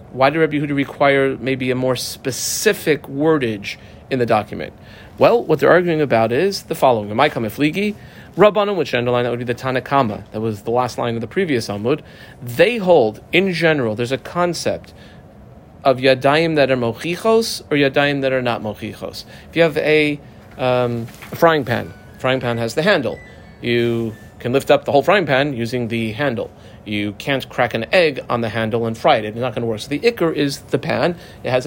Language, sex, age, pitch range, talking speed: English, male, 40-59, 115-155 Hz, 200 wpm